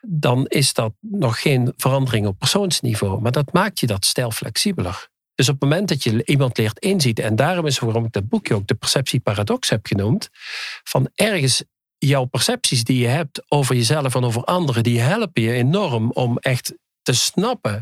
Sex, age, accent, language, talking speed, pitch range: male, 50-69, Dutch, Dutch, 190 wpm, 115-150 Hz